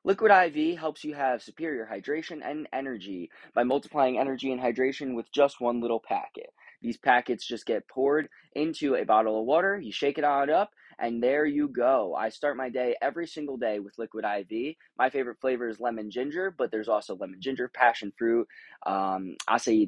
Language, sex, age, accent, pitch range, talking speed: English, male, 20-39, American, 110-140 Hz, 190 wpm